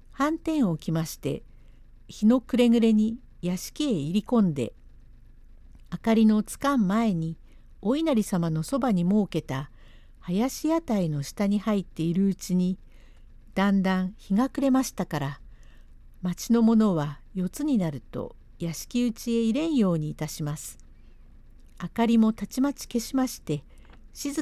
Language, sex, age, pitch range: Japanese, female, 50-69, 170-245 Hz